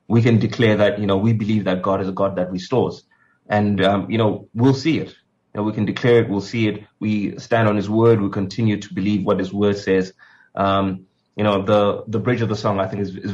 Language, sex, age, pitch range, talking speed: English, male, 20-39, 100-115 Hz, 255 wpm